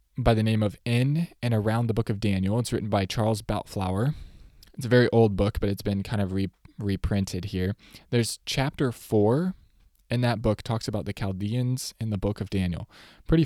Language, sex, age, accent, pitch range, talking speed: English, male, 20-39, American, 95-120 Hz, 200 wpm